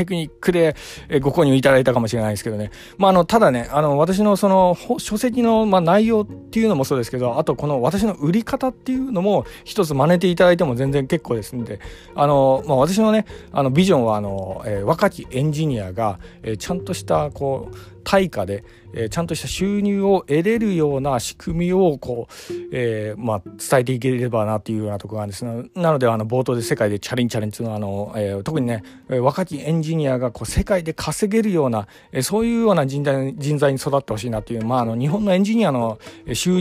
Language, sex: Japanese, male